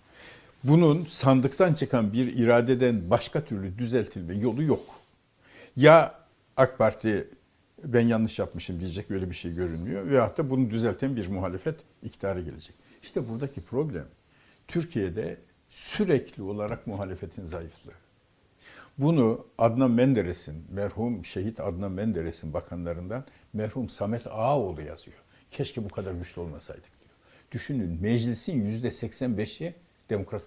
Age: 60-79